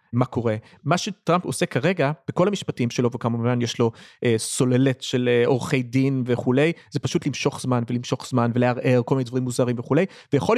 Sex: male